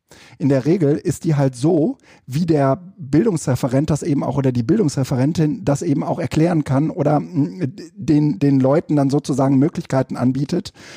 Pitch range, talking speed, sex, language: 130-155 Hz, 160 wpm, male, German